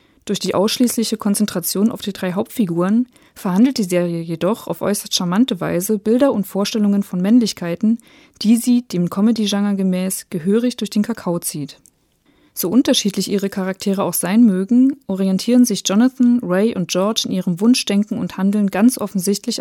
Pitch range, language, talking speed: 185-220 Hz, English, 155 wpm